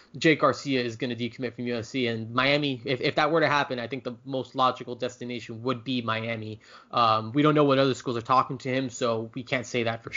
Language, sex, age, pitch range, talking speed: English, male, 20-39, 125-145 Hz, 250 wpm